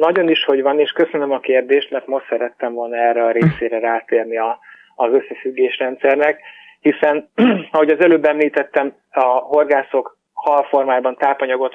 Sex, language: male, Hungarian